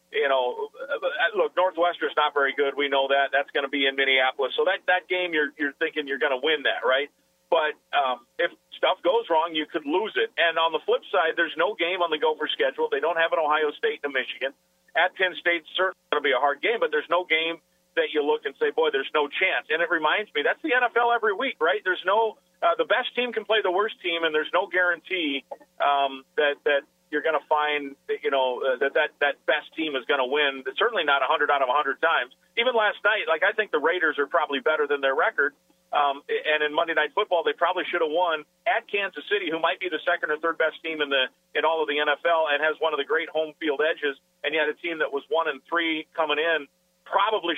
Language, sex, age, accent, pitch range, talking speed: English, male, 40-59, American, 150-230 Hz, 260 wpm